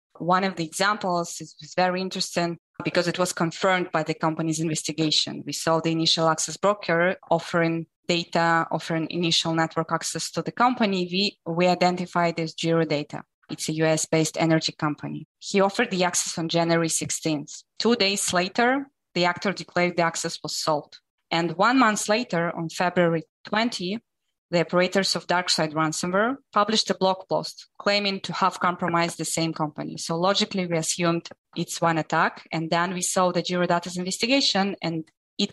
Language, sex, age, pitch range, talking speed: English, female, 20-39, 165-190 Hz, 165 wpm